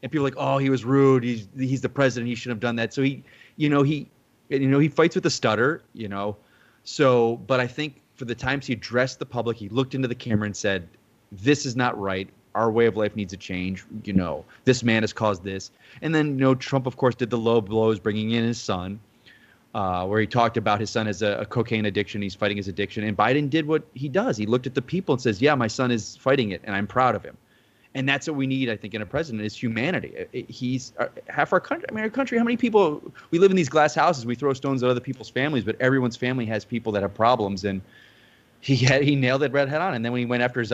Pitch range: 110-135 Hz